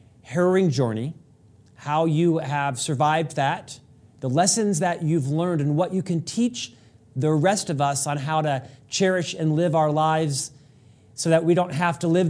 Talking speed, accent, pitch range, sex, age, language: 175 wpm, American, 135-170 Hz, male, 40-59, English